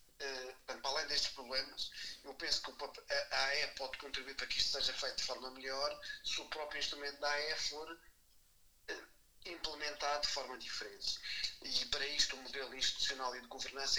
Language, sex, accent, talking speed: Portuguese, male, Portuguese, 165 wpm